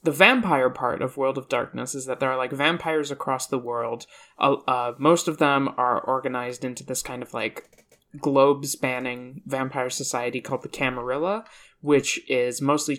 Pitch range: 125-155 Hz